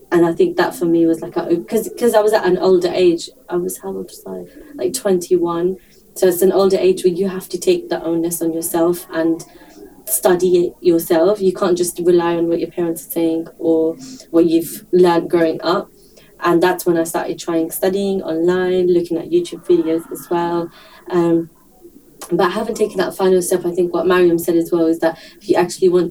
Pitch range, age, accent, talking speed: 170-195 Hz, 20-39, British, 210 wpm